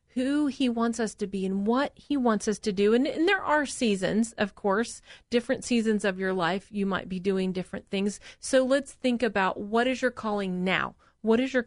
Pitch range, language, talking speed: 200-255 Hz, English, 220 wpm